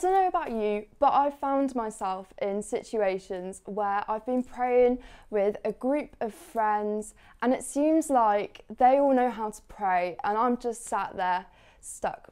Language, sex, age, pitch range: English, female, 20-39, 195-250 Hz